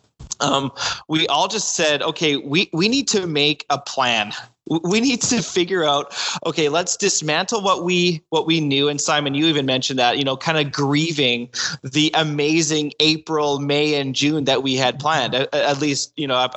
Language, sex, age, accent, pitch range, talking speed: English, male, 20-39, American, 140-165 Hz, 190 wpm